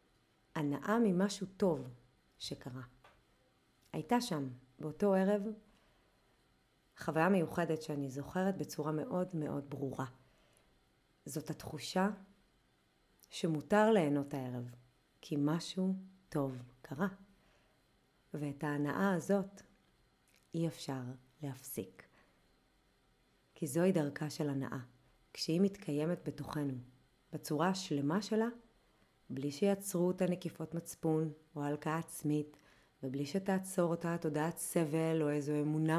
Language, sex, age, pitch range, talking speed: Hebrew, female, 30-49, 145-180 Hz, 95 wpm